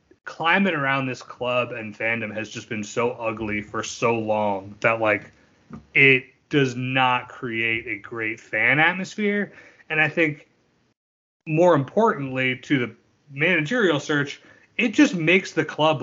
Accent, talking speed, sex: American, 140 wpm, male